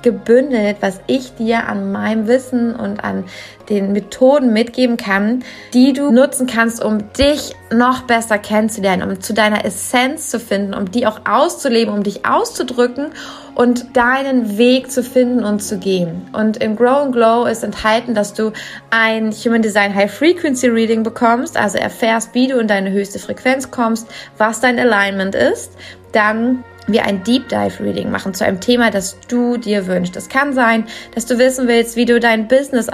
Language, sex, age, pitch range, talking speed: German, female, 20-39, 210-255 Hz, 175 wpm